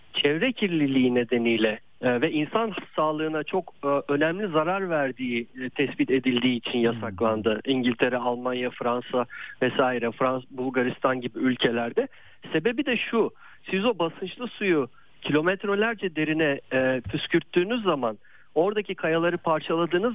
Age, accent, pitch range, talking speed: 50-69, native, 130-175 Hz, 105 wpm